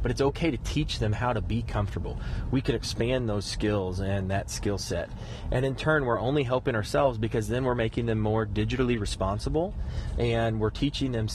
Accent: American